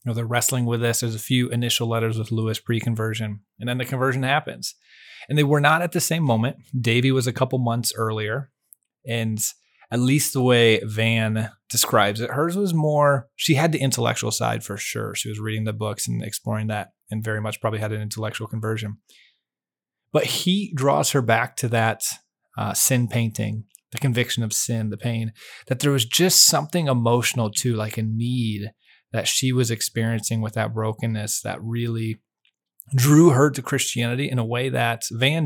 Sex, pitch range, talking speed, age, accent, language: male, 110-130 Hz, 190 wpm, 30-49, American, English